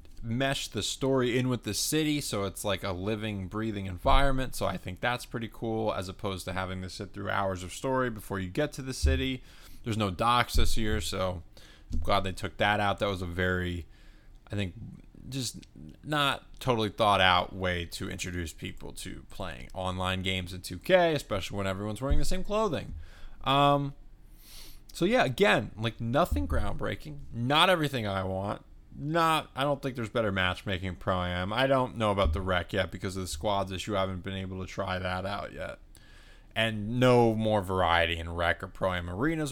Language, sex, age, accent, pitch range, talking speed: English, male, 20-39, American, 95-125 Hz, 190 wpm